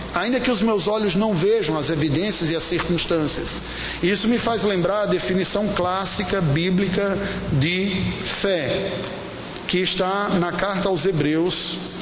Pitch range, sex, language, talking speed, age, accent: 160-200 Hz, male, Portuguese, 140 wpm, 50-69, Brazilian